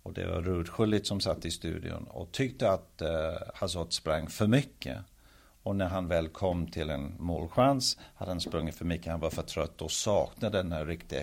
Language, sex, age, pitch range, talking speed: English, male, 50-69, 85-110 Hz, 205 wpm